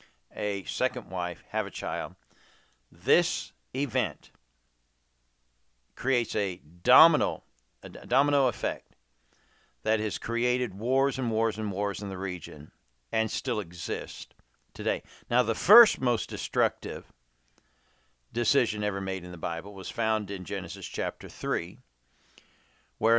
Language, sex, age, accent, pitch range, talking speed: English, male, 50-69, American, 95-120 Hz, 120 wpm